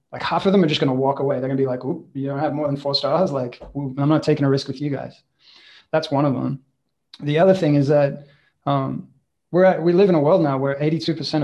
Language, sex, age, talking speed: English, male, 20-39, 275 wpm